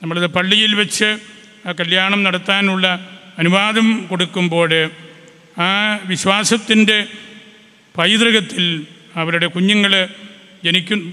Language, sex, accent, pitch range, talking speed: Malayalam, male, native, 180-210 Hz, 75 wpm